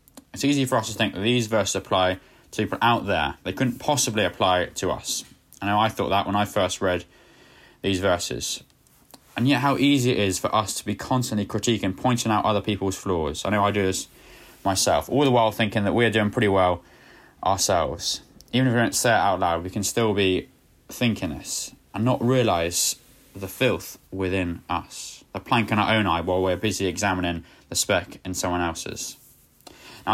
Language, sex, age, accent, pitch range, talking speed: English, male, 20-39, British, 90-115 Hz, 200 wpm